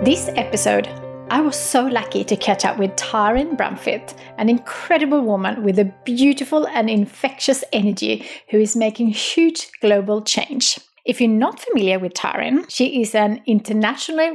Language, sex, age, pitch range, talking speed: English, female, 30-49, 200-255 Hz, 155 wpm